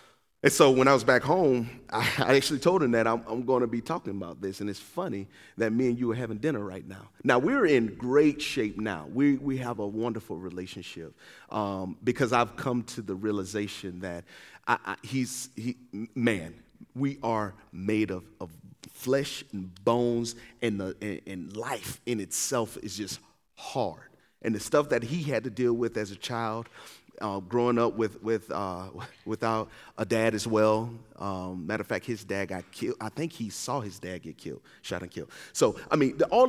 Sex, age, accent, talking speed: male, 30-49, American, 195 wpm